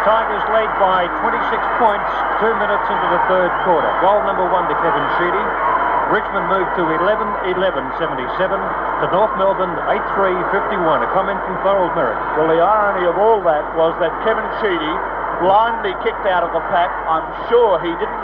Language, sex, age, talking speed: English, male, 50-69, 165 wpm